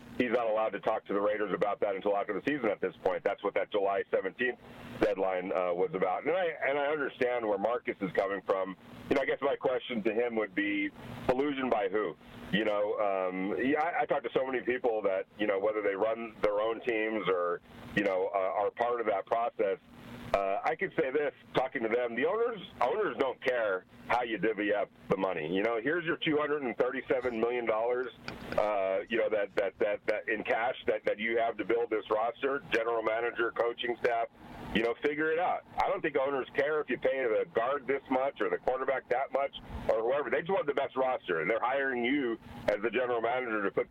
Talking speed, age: 225 wpm, 40-59